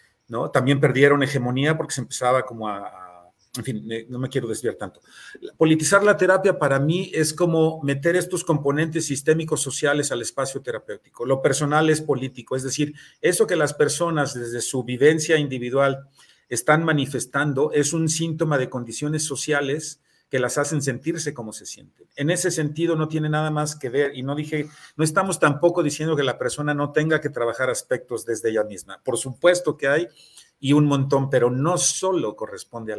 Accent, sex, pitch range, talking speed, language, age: Mexican, male, 135-170 Hz, 185 wpm, Spanish, 40-59